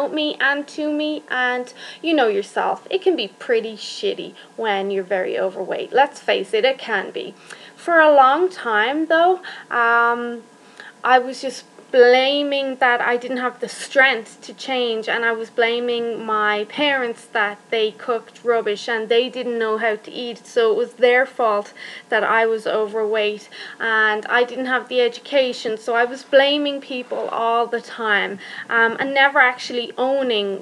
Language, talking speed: English, 170 wpm